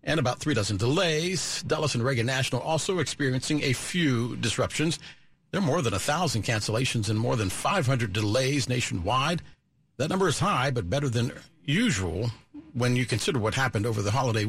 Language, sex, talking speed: English, male, 175 wpm